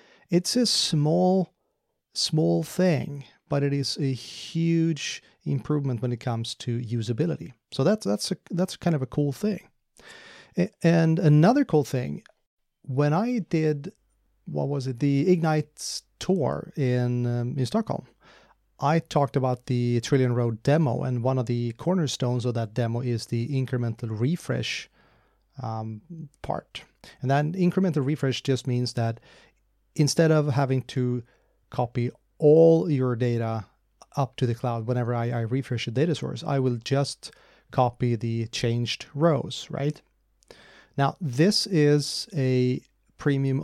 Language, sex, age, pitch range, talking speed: English, male, 30-49, 120-155 Hz, 140 wpm